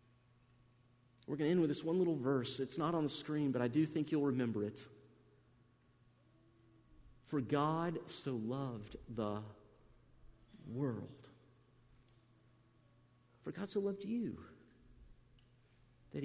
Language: English